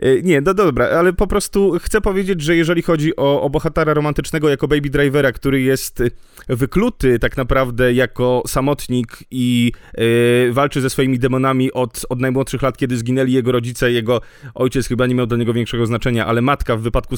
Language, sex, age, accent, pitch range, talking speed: Polish, male, 30-49, native, 130-155 Hz, 180 wpm